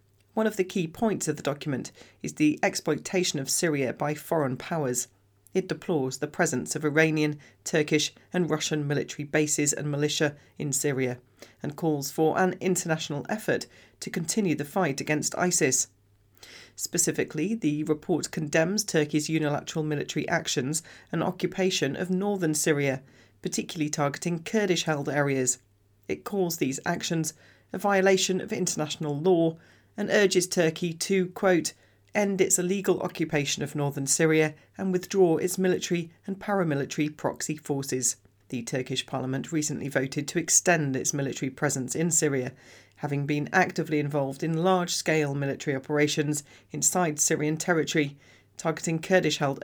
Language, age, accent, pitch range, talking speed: English, 40-59, British, 135-175 Hz, 140 wpm